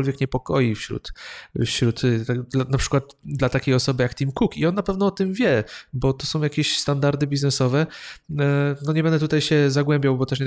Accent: native